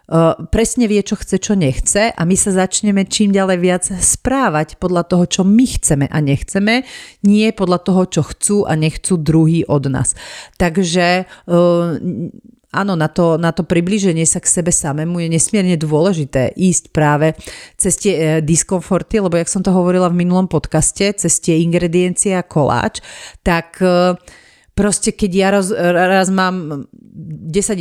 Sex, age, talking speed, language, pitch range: female, 40-59, 160 wpm, Slovak, 160-195 Hz